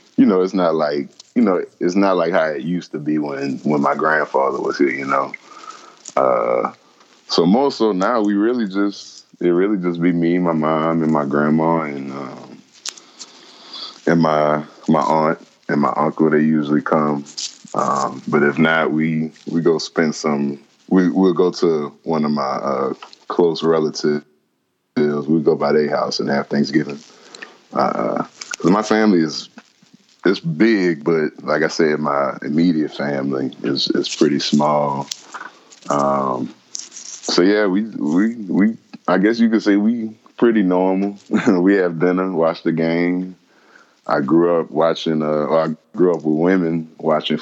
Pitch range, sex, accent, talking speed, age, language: 75-90 Hz, male, American, 165 wpm, 20-39, English